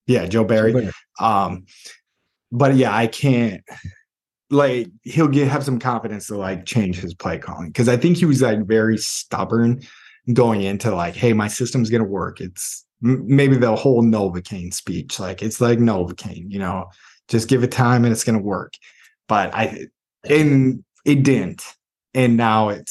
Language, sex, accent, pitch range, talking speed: English, male, American, 95-120 Hz, 170 wpm